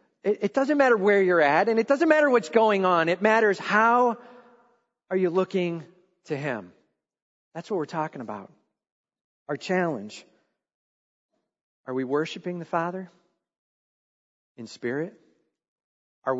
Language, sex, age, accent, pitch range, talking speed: English, male, 40-59, American, 130-215 Hz, 130 wpm